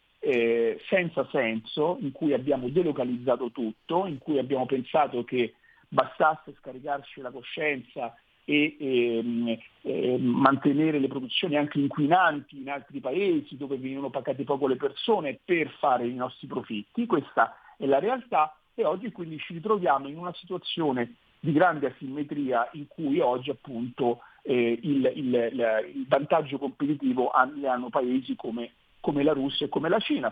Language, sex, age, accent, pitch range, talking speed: Italian, male, 50-69, native, 125-155 Hz, 150 wpm